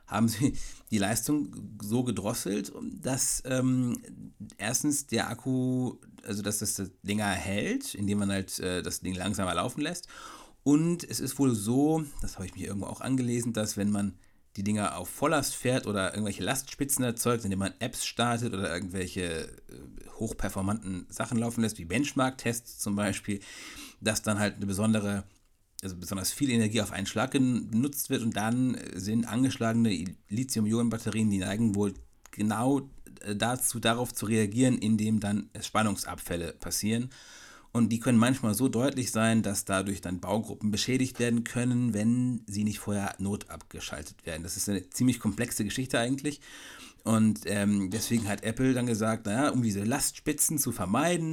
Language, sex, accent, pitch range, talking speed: German, male, German, 100-125 Hz, 155 wpm